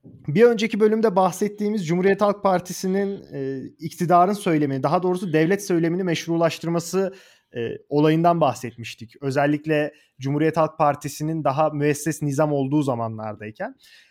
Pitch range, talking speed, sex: 155-210 Hz, 115 wpm, male